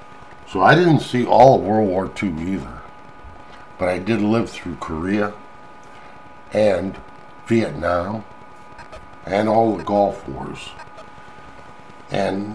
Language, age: English, 50-69